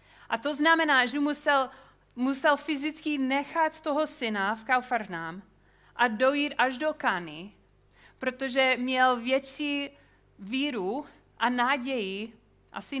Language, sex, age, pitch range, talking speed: Czech, female, 30-49, 205-265 Hz, 110 wpm